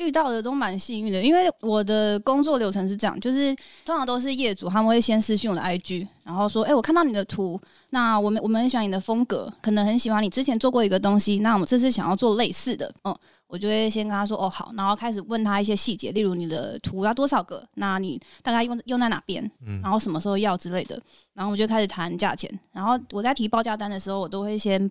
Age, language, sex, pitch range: 20-39, Chinese, female, 195-230 Hz